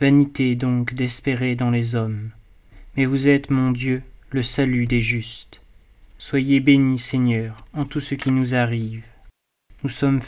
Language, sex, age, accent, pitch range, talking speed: French, male, 30-49, French, 115-135 Hz, 150 wpm